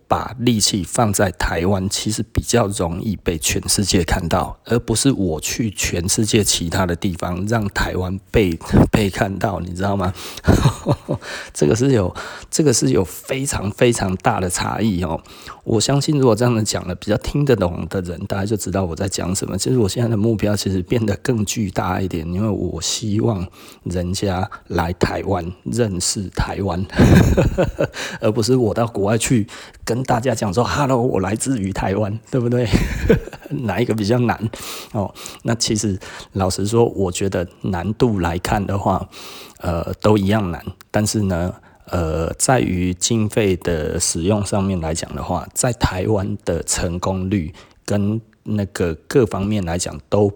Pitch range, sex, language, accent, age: 90-110 Hz, male, Chinese, native, 30-49